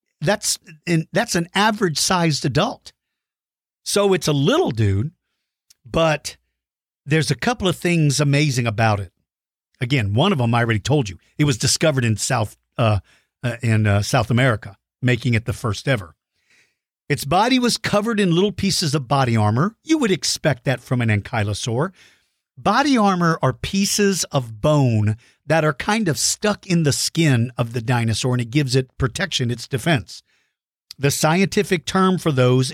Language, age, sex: English, 50-69, male